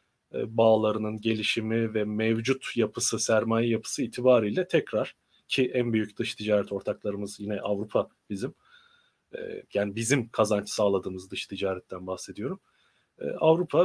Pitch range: 105-130 Hz